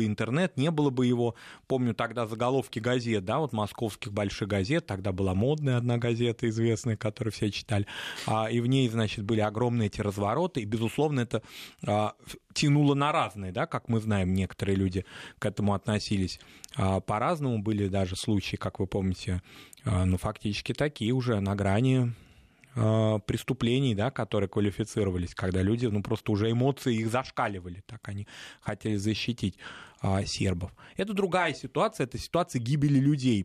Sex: male